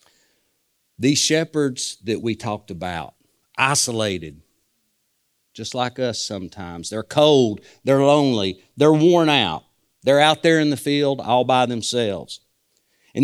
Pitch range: 105-140 Hz